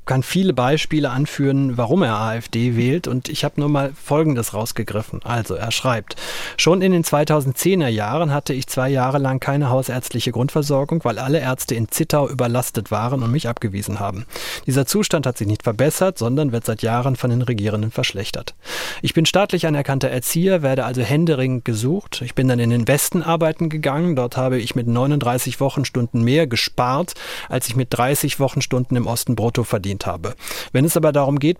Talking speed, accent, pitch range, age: 180 wpm, German, 120-150 Hz, 40-59